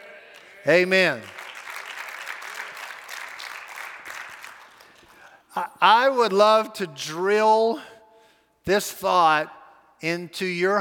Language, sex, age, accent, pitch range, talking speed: English, male, 50-69, American, 160-235 Hz, 55 wpm